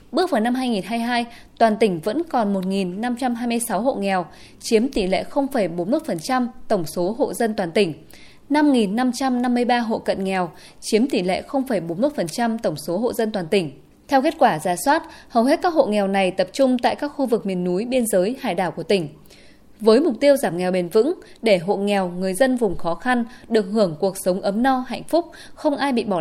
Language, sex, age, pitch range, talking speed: Vietnamese, female, 20-39, 195-260 Hz, 200 wpm